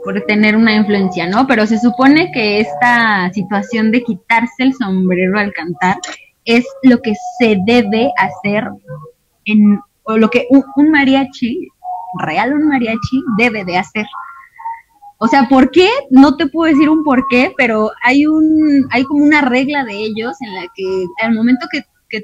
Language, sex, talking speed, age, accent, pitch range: Spanish, female, 170 wpm, 20-39, Mexican, 205-275 Hz